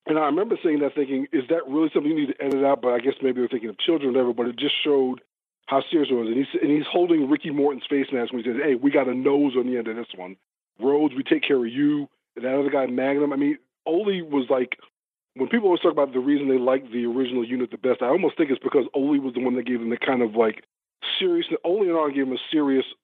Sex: male